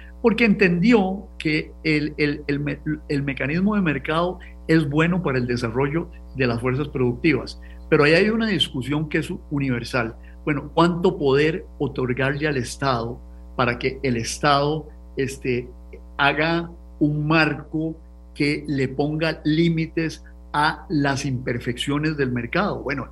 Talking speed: 130 wpm